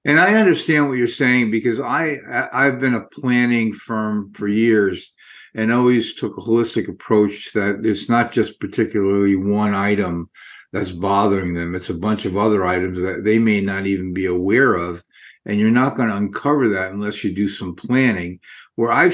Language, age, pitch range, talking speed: English, 50-69, 100-125 Hz, 180 wpm